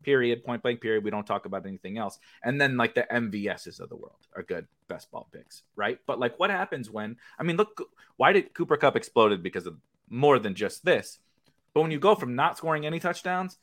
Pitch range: 120-160 Hz